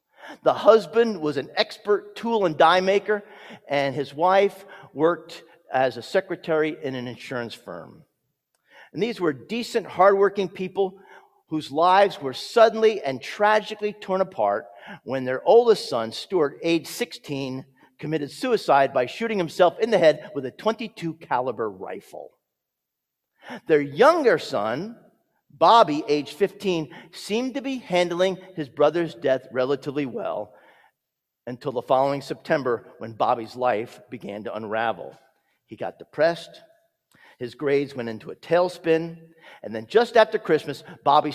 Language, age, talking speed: English, 50-69, 135 wpm